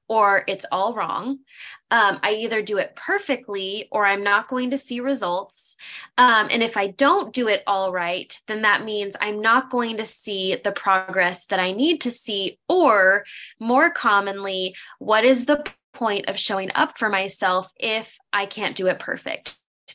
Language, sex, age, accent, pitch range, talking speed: English, female, 10-29, American, 190-240 Hz, 180 wpm